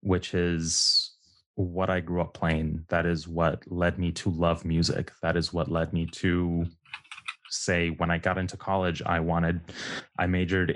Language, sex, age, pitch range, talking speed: English, male, 20-39, 85-100 Hz, 175 wpm